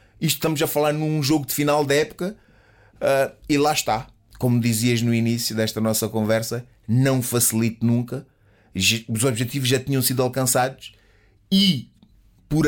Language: Portuguese